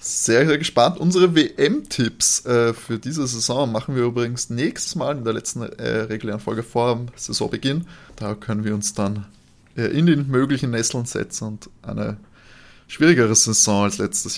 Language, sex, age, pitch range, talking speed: German, male, 20-39, 110-140 Hz, 165 wpm